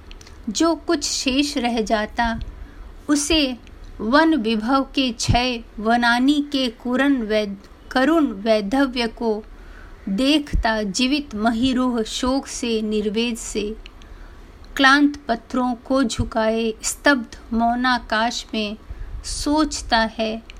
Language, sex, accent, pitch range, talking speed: Hindi, female, native, 225-265 Hz, 95 wpm